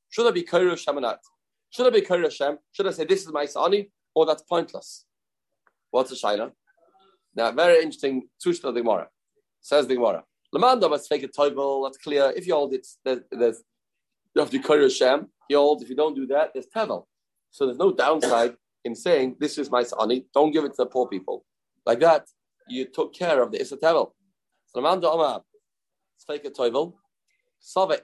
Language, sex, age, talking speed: English, male, 30-49, 190 wpm